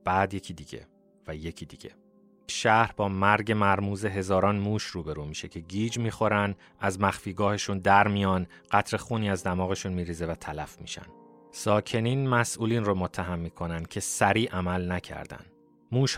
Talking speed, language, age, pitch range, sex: 140 wpm, Persian, 30-49, 90-105 Hz, male